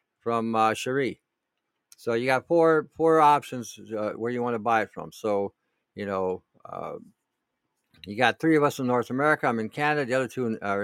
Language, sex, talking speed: English, male, 200 wpm